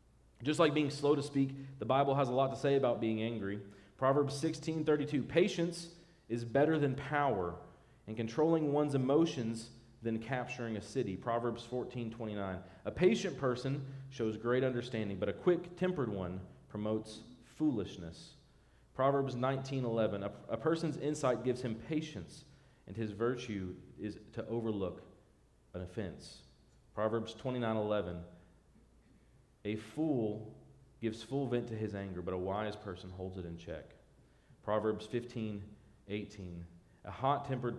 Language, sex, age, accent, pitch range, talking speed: English, male, 40-59, American, 105-140 Hz, 140 wpm